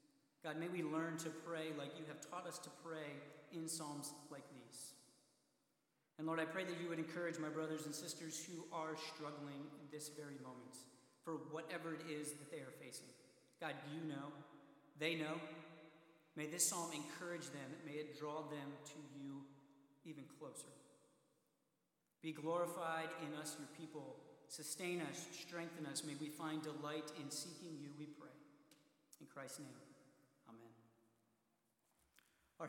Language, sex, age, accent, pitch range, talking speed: English, male, 40-59, American, 145-165 Hz, 155 wpm